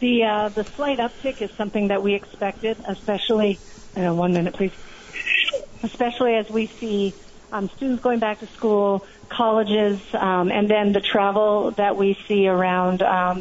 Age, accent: 40-59, American